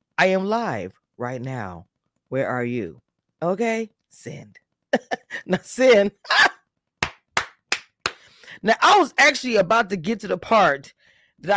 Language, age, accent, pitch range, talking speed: English, 20-39, American, 140-200 Hz, 120 wpm